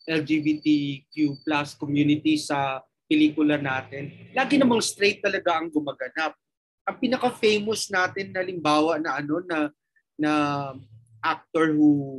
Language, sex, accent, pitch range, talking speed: English, male, Filipino, 150-195 Hz, 105 wpm